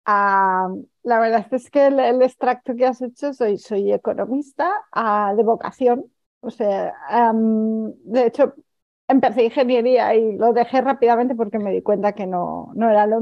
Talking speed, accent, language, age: 170 wpm, Spanish, Spanish, 40-59